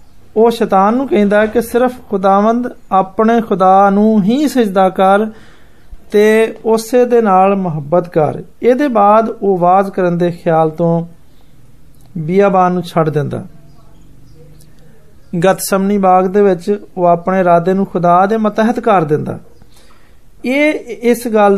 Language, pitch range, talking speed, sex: Hindi, 175-225 Hz, 50 wpm, male